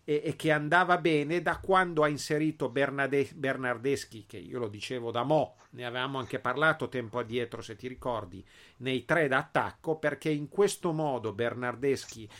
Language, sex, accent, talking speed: Italian, male, native, 160 wpm